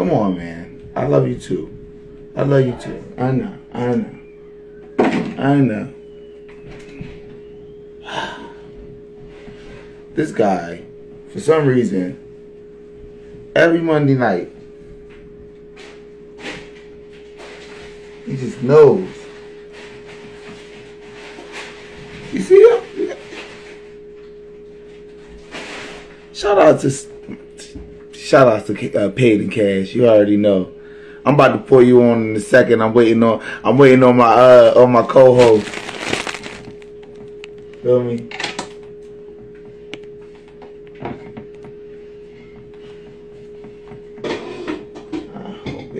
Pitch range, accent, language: 130-210 Hz, American, English